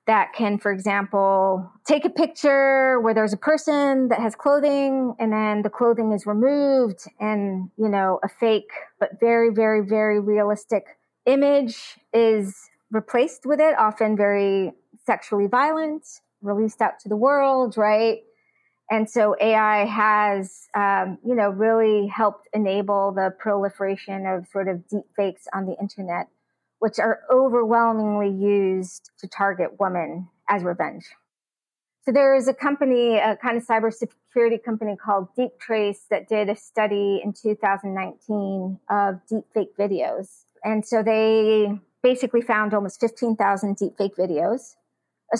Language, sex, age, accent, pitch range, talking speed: English, female, 30-49, American, 200-240 Hz, 140 wpm